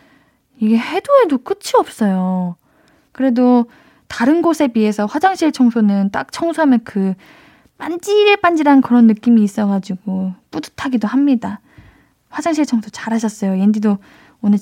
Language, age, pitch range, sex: Korean, 10-29, 210-290 Hz, female